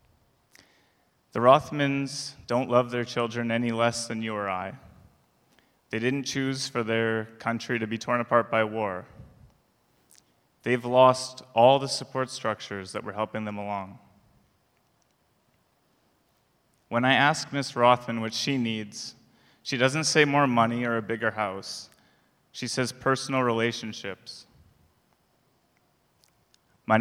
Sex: male